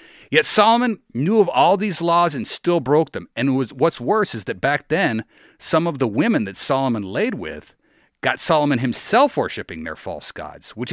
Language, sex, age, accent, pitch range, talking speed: English, male, 40-59, American, 110-150 Hz, 185 wpm